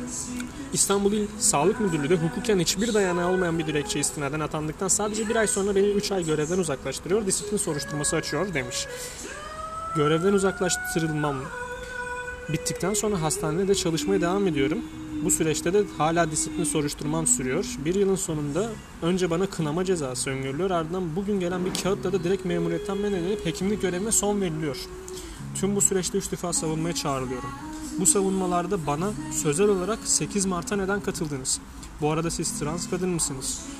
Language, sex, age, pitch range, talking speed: Turkish, male, 30-49, 150-195 Hz, 150 wpm